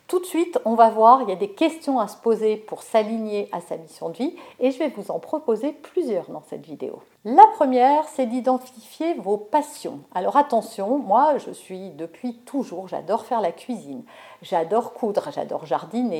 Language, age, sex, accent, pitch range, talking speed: French, 50-69, female, French, 185-275 Hz, 195 wpm